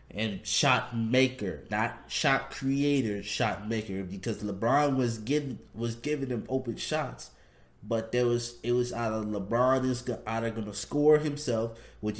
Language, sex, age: English, male, 20-39